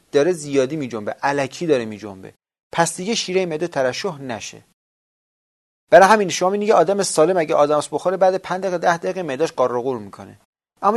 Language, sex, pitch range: Persian, male, 120-185 Hz